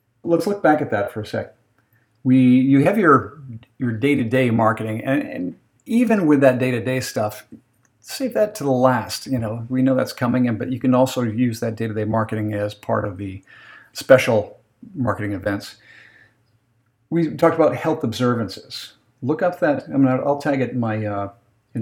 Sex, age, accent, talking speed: male, 50-69, American, 200 wpm